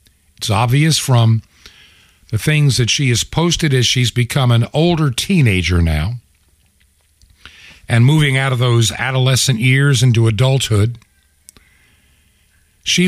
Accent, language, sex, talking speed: American, English, male, 120 wpm